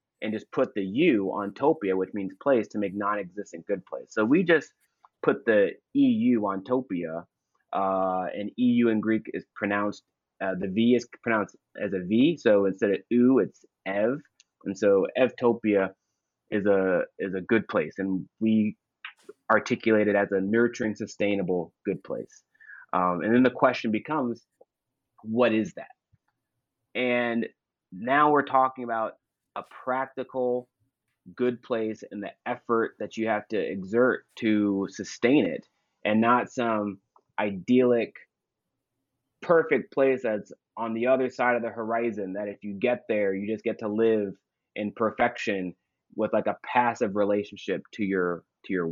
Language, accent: English, American